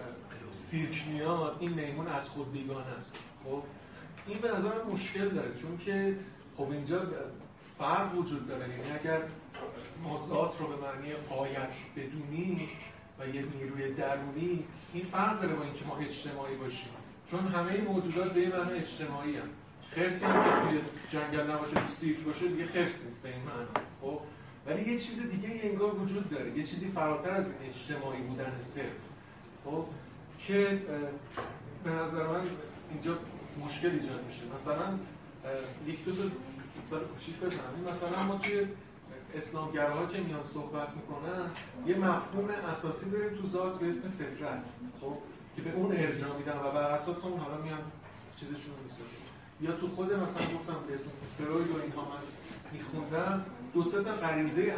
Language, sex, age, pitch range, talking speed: Persian, male, 30-49, 140-175 Hz, 145 wpm